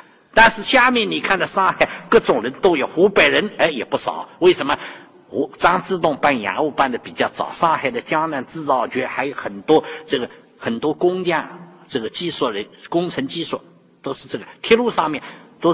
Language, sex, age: Chinese, male, 50-69